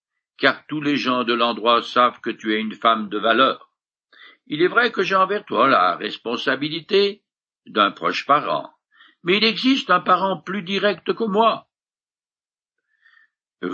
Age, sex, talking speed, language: 60-79, male, 155 wpm, French